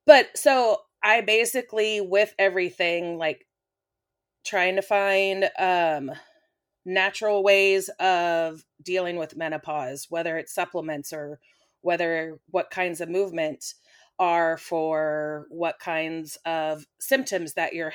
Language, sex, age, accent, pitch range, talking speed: English, female, 30-49, American, 165-195 Hz, 115 wpm